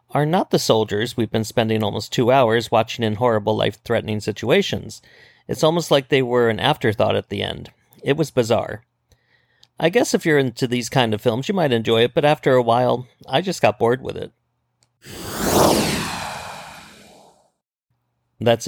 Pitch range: 115-145 Hz